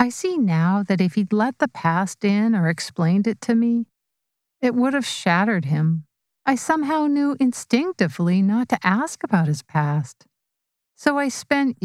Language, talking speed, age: English, 165 wpm, 50-69